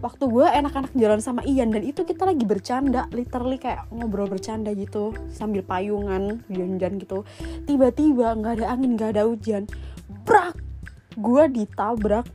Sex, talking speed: female, 145 wpm